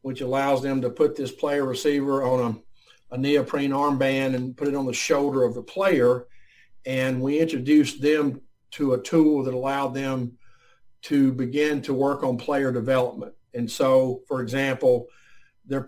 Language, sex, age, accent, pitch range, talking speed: English, male, 50-69, American, 125-145 Hz, 165 wpm